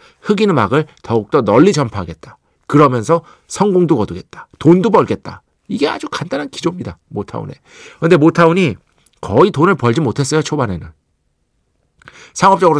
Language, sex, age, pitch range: Korean, male, 50-69, 110-165 Hz